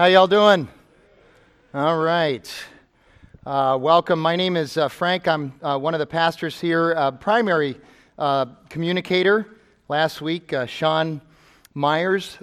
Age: 40-59